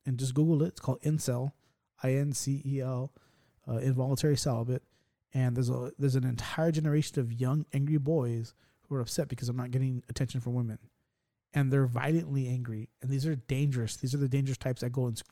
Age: 20-39